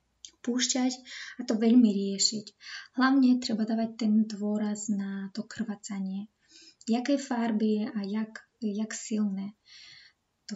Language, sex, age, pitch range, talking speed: Slovak, female, 20-39, 210-250 Hz, 110 wpm